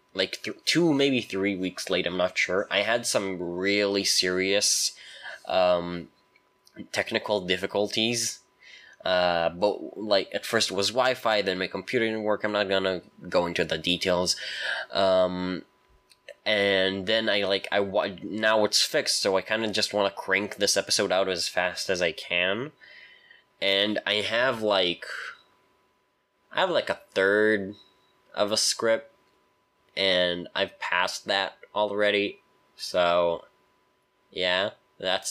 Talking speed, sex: 145 wpm, male